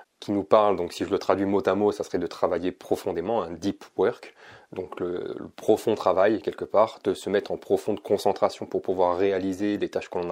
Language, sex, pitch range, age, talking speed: French, male, 100-145 Hz, 20-39, 220 wpm